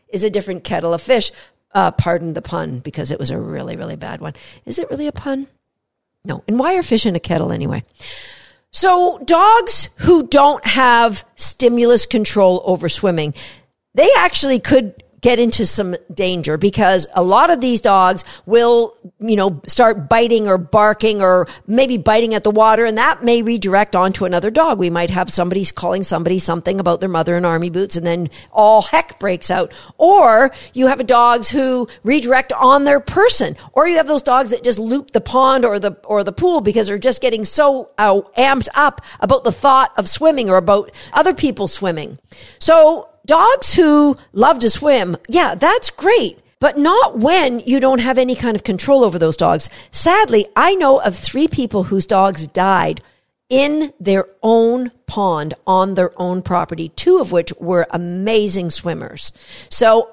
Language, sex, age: English, female, 50-69